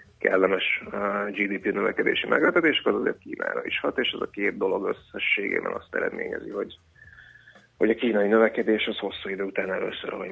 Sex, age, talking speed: male, 30-49, 170 wpm